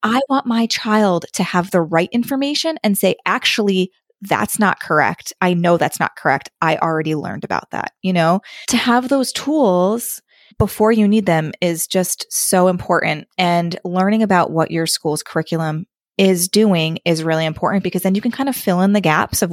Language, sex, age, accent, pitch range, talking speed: English, female, 20-39, American, 170-225 Hz, 190 wpm